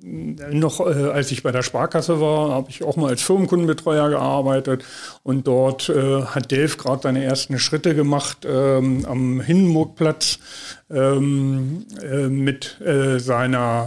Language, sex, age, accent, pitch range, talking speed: German, male, 40-59, German, 130-155 Hz, 135 wpm